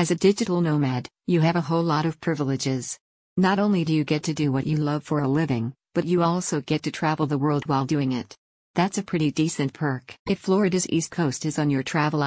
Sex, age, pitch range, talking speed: female, 50-69, 145-170 Hz, 235 wpm